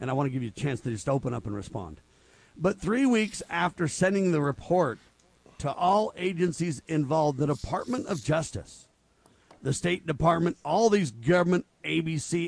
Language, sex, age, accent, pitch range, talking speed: English, male, 50-69, American, 125-175 Hz, 175 wpm